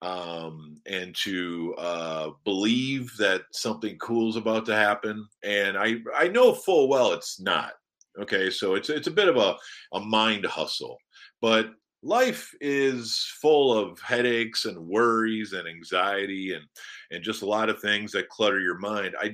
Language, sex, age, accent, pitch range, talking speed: English, male, 40-59, American, 90-120 Hz, 165 wpm